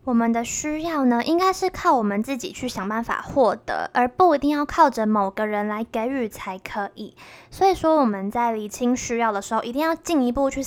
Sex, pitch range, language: female, 215-280 Hz, Chinese